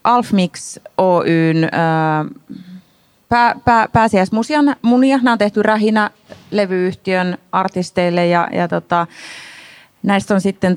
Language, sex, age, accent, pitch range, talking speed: Finnish, female, 30-49, native, 165-215 Hz, 95 wpm